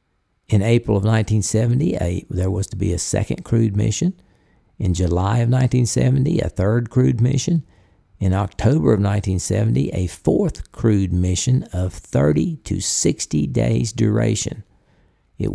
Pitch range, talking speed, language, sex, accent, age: 90-115 Hz, 140 wpm, English, male, American, 50-69